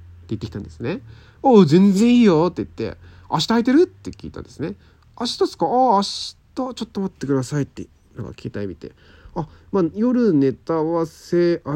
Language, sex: Japanese, male